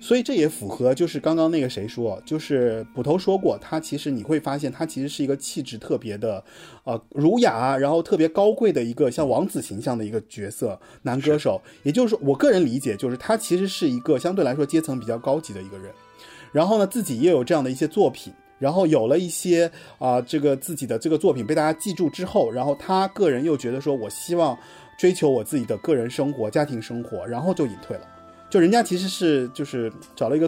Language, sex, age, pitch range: Chinese, male, 30-49, 125-175 Hz